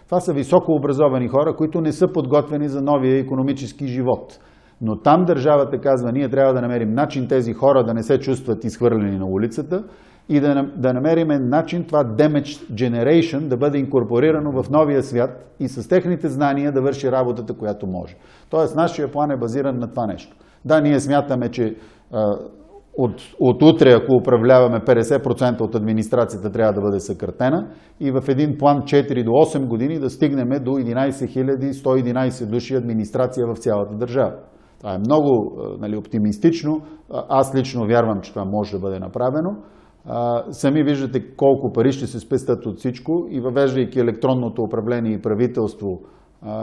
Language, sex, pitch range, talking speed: Bulgarian, male, 115-145 Hz, 160 wpm